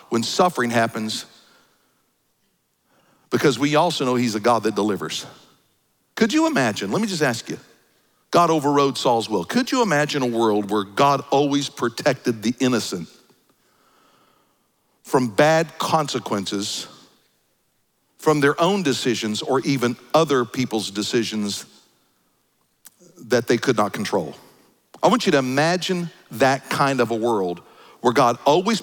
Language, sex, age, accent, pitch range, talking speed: English, male, 50-69, American, 115-160 Hz, 135 wpm